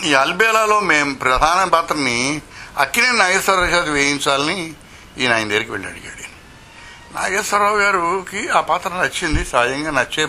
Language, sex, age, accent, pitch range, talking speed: Telugu, male, 60-79, native, 110-140 Hz, 120 wpm